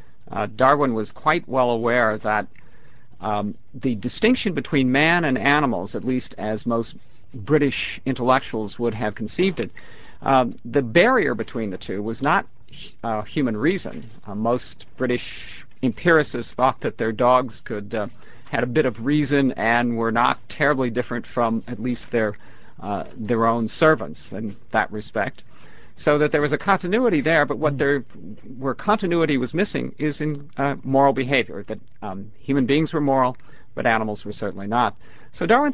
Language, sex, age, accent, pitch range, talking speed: English, male, 50-69, American, 110-145 Hz, 165 wpm